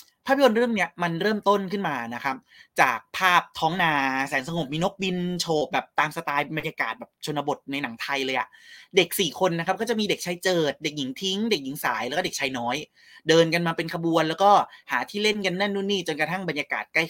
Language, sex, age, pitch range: Thai, male, 20-39, 145-195 Hz